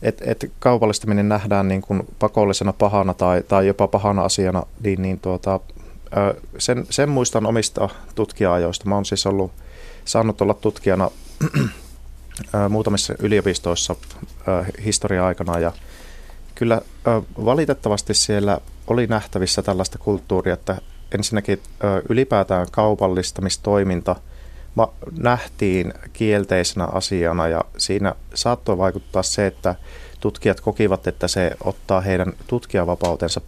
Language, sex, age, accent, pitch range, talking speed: Finnish, male, 30-49, native, 90-105 Hz, 105 wpm